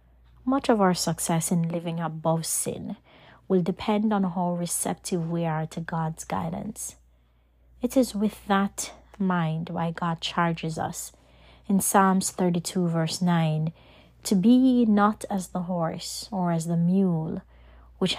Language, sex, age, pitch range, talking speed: English, female, 30-49, 160-200 Hz, 140 wpm